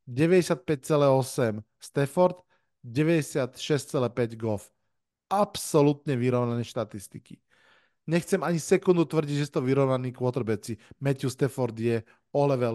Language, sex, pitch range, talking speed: Slovak, male, 120-155 Hz, 100 wpm